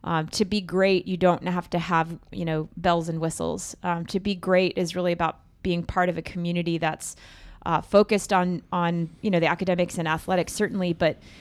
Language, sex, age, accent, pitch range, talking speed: English, female, 30-49, American, 175-195 Hz, 205 wpm